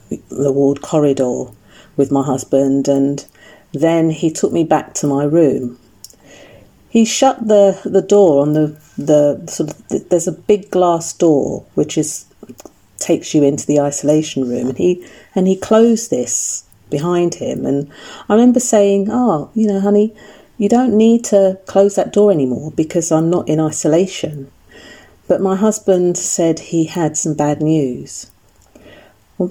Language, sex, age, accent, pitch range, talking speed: English, female, 40-59, British, 145-180 Hz, 155 wpm